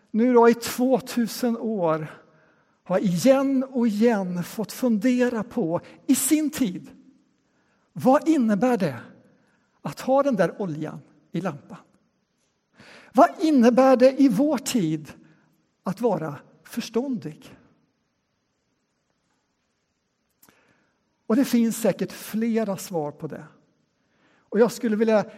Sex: male